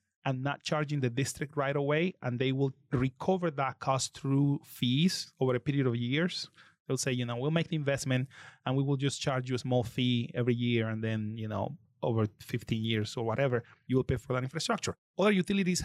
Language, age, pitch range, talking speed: English, 30-49, 130-165 Hz, 210 wpm